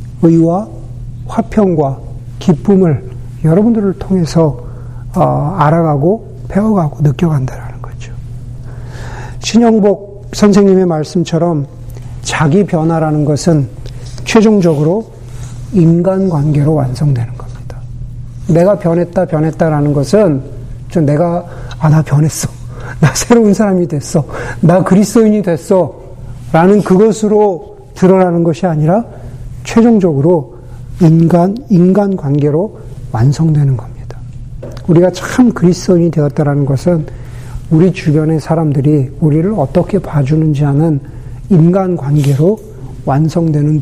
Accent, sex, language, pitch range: native, male, Korean, 125-175 Hz